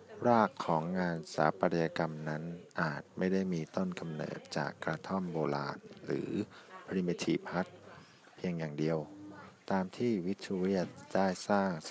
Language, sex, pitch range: Thai, male, 80-105 Hz